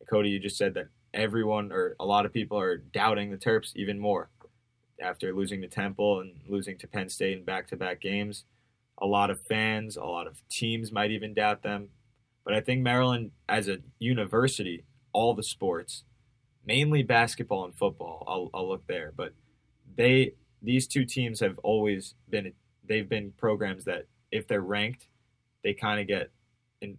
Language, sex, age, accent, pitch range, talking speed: English, male, 20-39, American, 100-120 Hz, 175 wpm